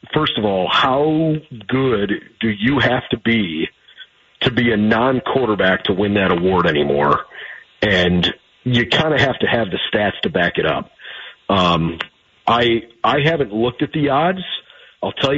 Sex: male